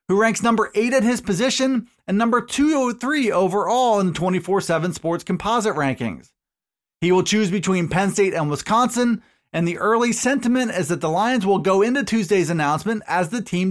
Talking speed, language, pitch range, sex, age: 180 wpm, English, 180-235 Hz, male, 30-49